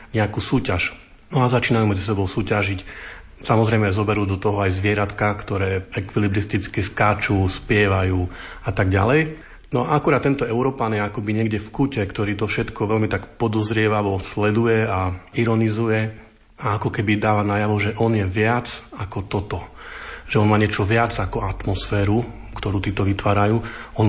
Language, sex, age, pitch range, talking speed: Slovak, male, 40-59, 100-115 Hz, 150 wpm